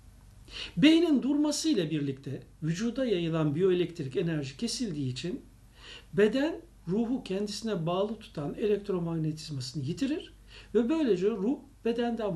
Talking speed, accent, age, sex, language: 95 wpm, native, 60-79, male, Turkish